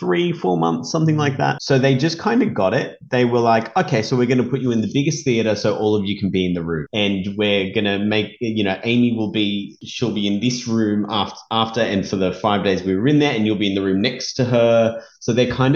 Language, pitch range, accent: English, 95-120 Hz, Australian